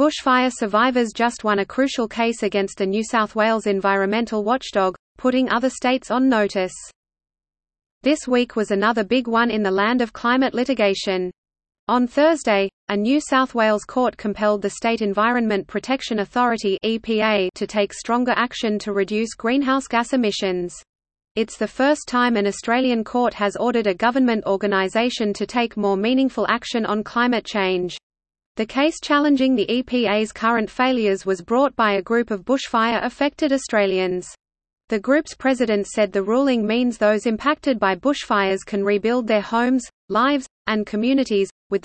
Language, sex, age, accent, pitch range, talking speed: English, female, 30-49, Australian, 205-250 Hz, 155 wpm